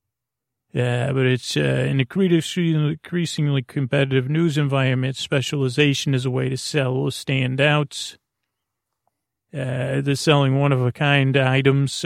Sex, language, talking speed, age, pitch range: male, English, 135 wpm, 40-59, 130-145 Hz